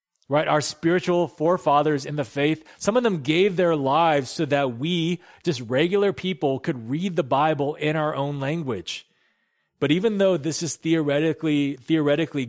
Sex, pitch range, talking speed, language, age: male, 115-155 Hz, 165 wpm, English, 30-49